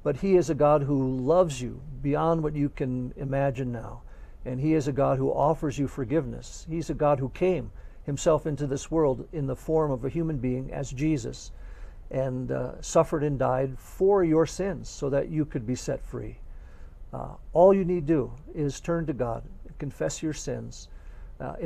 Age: 50-69